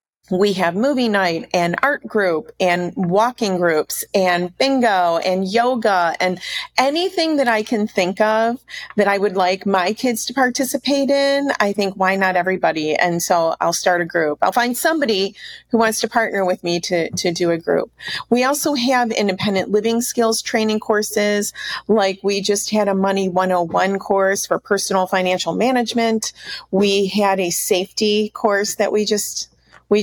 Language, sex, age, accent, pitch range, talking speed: English, female, 40-59, American, 185-220 Hz, 170 wpm